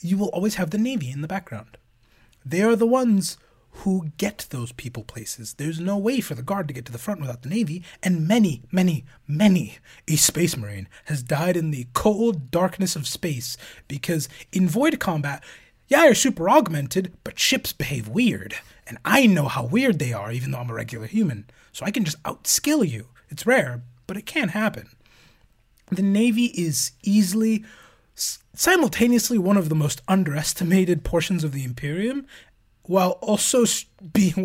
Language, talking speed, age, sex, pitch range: English, 175 wpm, 30-49, male, 125-200 Hz